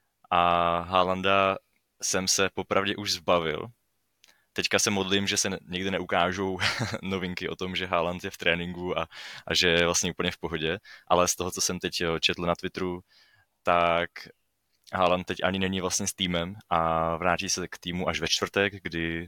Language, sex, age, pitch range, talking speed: Czech, male, 20-39, 85-95 Hz, 175 wpm